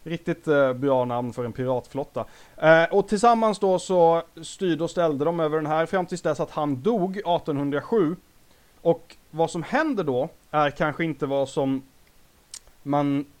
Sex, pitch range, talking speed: male, 135-170 Hz, 155 wpm